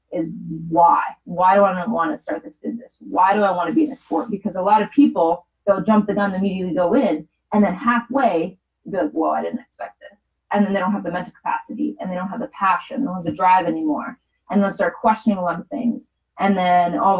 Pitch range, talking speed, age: 180-230 Hz, 260 wpm, 20-39